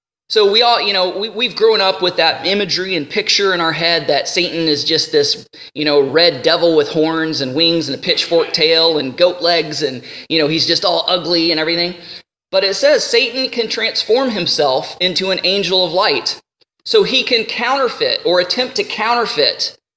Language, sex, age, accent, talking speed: English, male, 20-39, American, 200 wpm